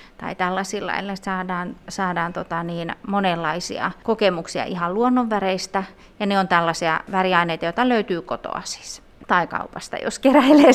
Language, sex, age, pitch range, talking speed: Finnish, female, 30-49, 180-235 Hz, 135 wpm